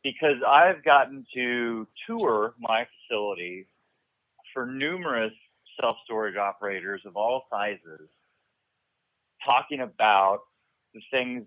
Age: 40-59